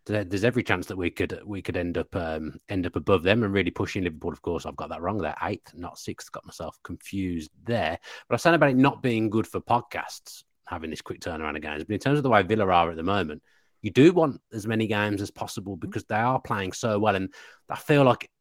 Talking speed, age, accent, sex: 255 wpm, 30-49, British, male